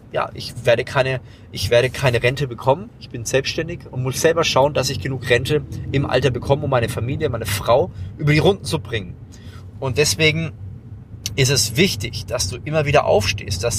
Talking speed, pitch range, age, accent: 190 wpm, 115-150 Hz, 30-49, German